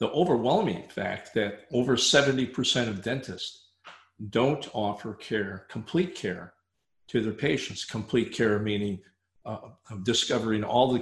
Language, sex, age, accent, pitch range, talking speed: English, male, 50-69, American, 100-120 Hz, 130 wpm